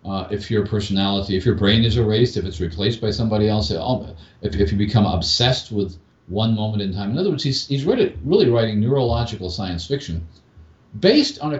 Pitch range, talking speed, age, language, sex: 90-120 Hz, 195 wpm, 50-69, English, male